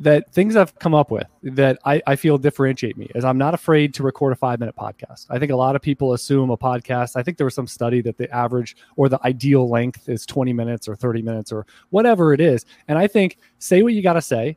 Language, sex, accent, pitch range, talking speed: English, male, American, 125-155 Hz, 260 wpm